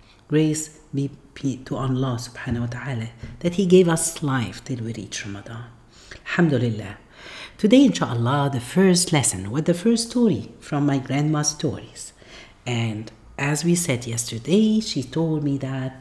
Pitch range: 125-175 Hz